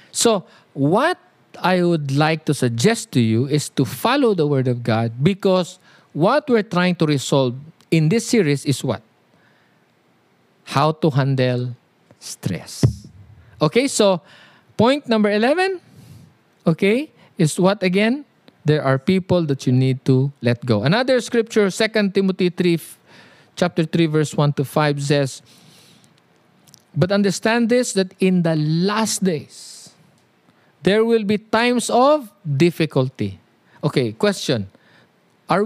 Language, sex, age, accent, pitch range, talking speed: English, male, 50-69, Filipino, 145-215 Hz, 130 wpm